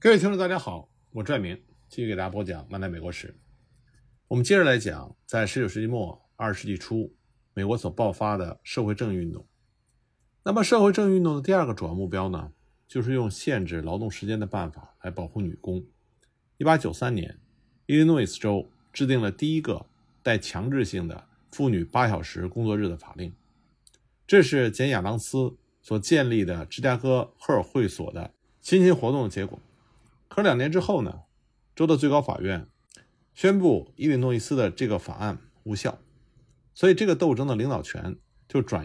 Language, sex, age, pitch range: Chinese, male, 50-69, 100-135 Hz